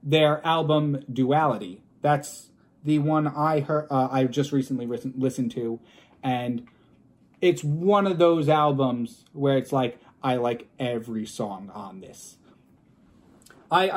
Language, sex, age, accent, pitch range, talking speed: English, male, 30-49, American, 135-185 Hz, 130 wpm